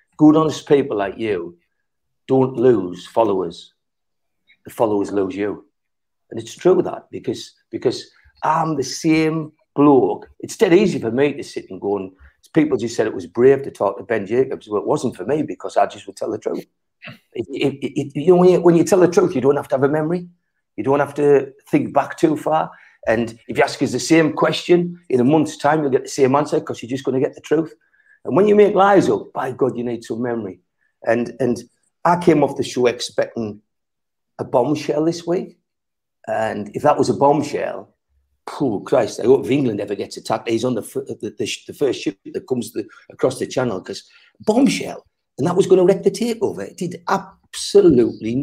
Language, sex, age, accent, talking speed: English, male, 50-69, British, 215 wpm